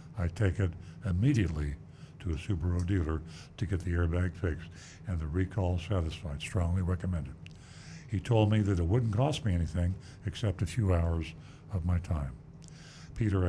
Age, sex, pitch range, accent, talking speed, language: 60-79, male, 85-110 Hz, American, 160 wpm, English